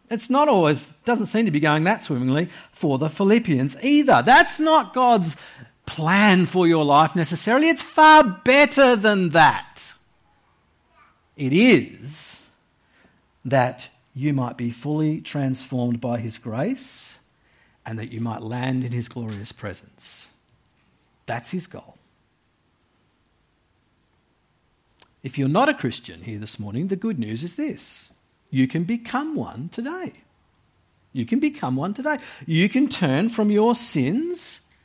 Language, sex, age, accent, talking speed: English, male, 50-69, Australian, 135 wpm